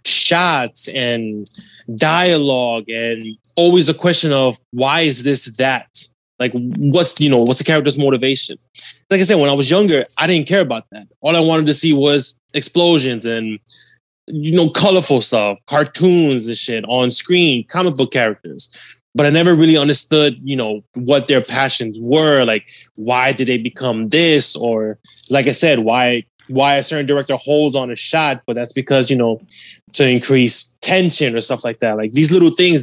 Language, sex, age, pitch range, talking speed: English, male, 20-39, 120-145 Hz, 180 wpm